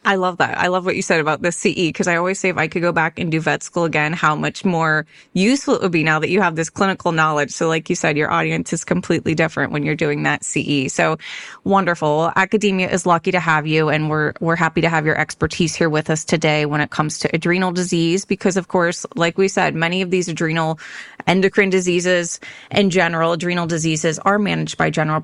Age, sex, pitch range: 20-39, female, 155-190 Hz